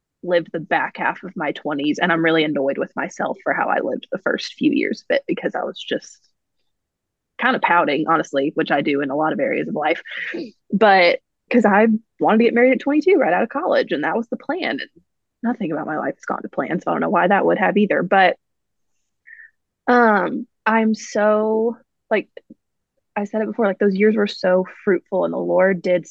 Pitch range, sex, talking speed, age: 170-220 Hz, female, 220 wpm, 20-39